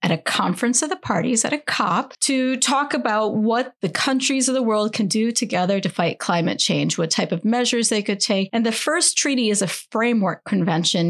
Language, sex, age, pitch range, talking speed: English, female, 30-49, 185-245 Hz, 215 wpm